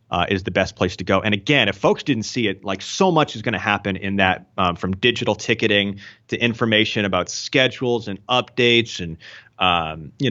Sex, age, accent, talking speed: male, 30-49, American, 210 wpm